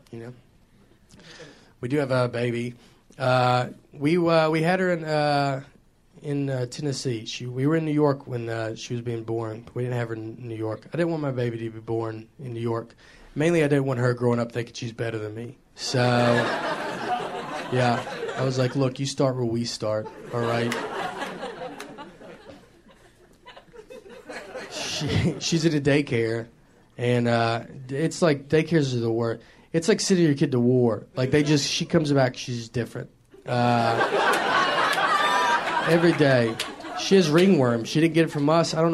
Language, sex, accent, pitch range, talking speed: English, male, American, 120-155 Hz, 175 wpm